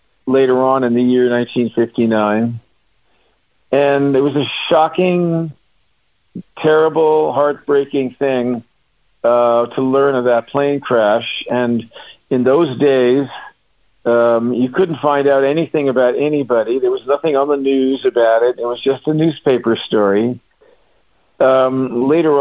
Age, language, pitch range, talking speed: 50-69, English, 120-145 Hz, 130 wpm